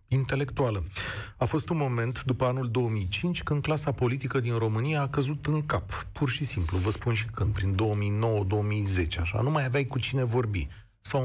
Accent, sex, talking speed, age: native, male, 180 wpm, 30-49